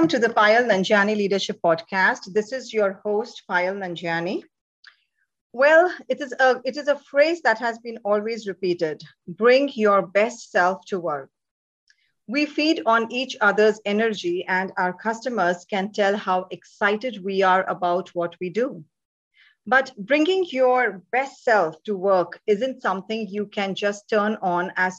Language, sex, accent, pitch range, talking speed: English, female, Indian, 185-245 Hz, 160 wpm